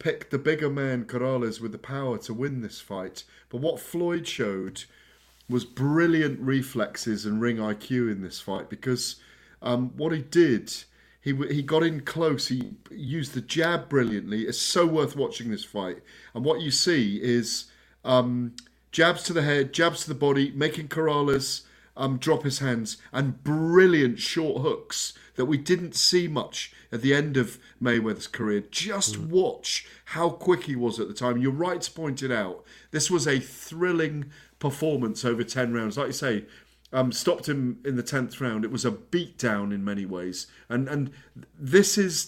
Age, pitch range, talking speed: 40-59, 115-155 Hz, 175 wpm